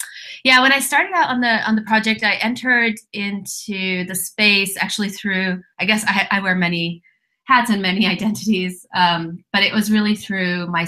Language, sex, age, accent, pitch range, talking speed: English, female, 30-49, American, 175-210 Hz, 190 wpm